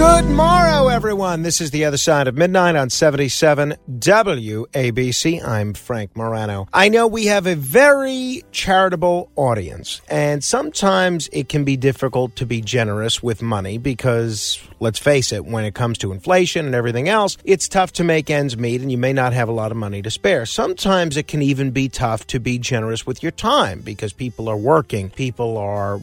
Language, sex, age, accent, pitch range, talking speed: English, male, 40-59, American, 115-175 Hz, 190 wpm